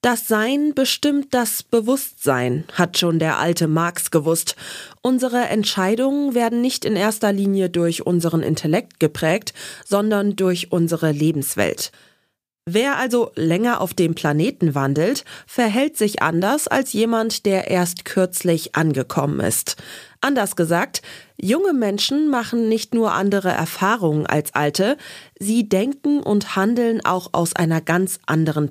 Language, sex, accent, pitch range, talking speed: German, female, German, 165-230 Hz, 130 wpm